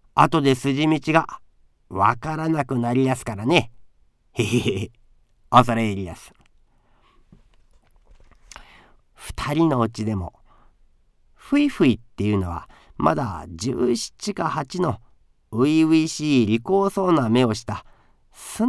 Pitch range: 105-155 Hz